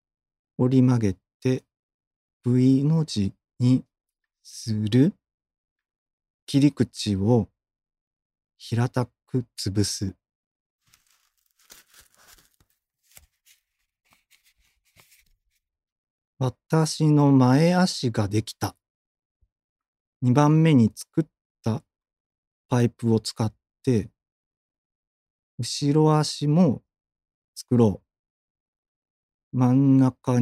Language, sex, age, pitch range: Japanese, male, 40-59, 105-135 Hz